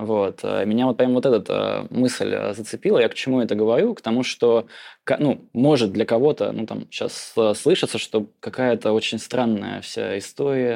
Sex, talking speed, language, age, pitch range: male, 165 wpm, Russian, 20-39, 110-125 Hz